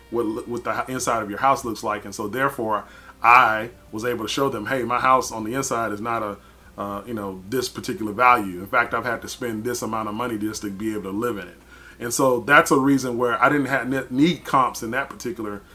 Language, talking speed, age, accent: English, 250 wpm, 30-49, American